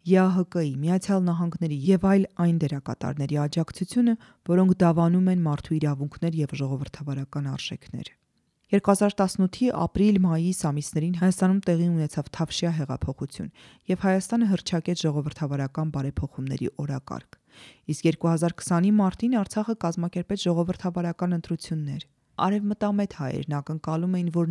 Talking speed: 90 wpm